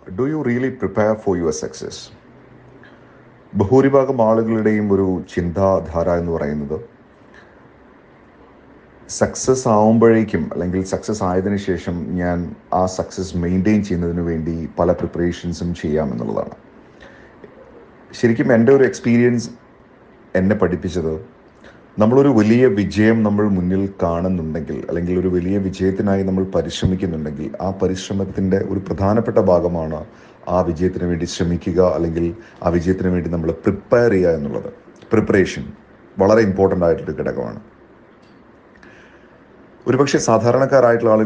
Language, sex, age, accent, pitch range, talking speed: Malayalam, male, 30-49, native, 85-105 Hz, 100 wpm